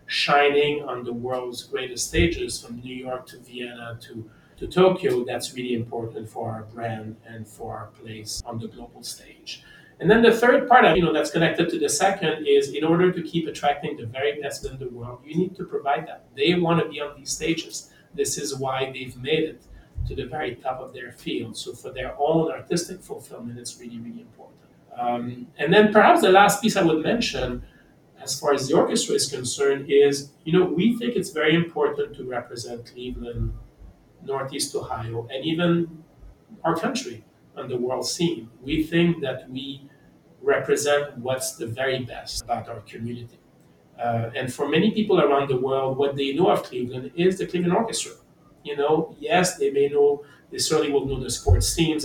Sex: male